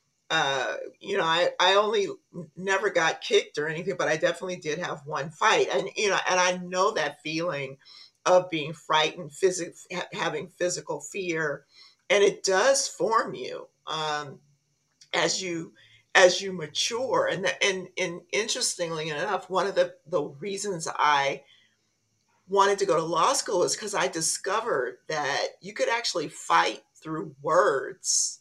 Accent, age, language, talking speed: American, 50-69, English, 150 wpm